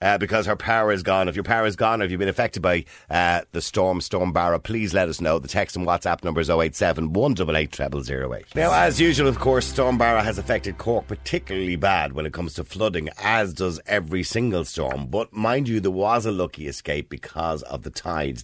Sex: male